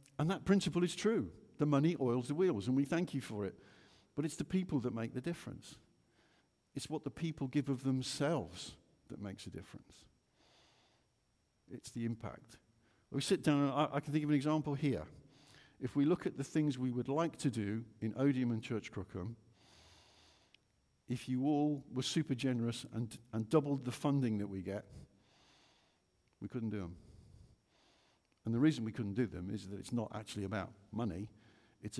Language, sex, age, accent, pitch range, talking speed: English, male, 50-69, British, 105-140 Hz, 185 wpm